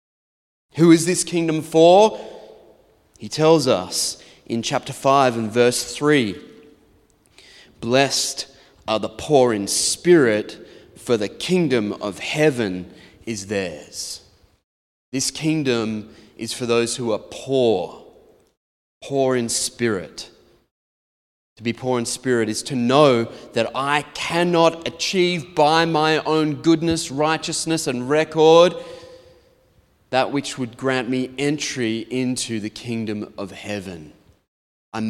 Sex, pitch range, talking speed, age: male, 115-155 Hz, 120 wpm, 30-49